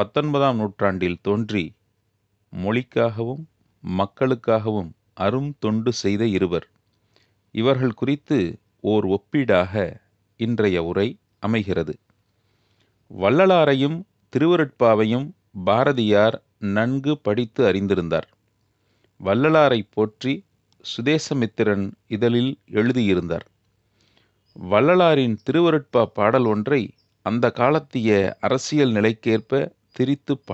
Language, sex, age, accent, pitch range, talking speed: Tamil, male, 40-59, native, 105-130 Hz, 70 wpm